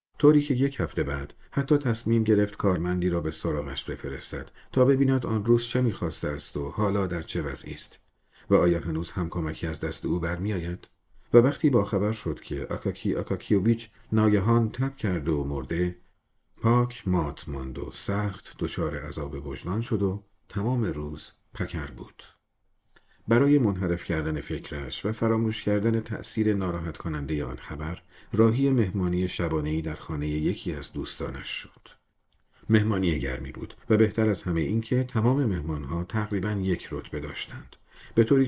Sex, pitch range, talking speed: male, 80-115 Hz, 155 wpm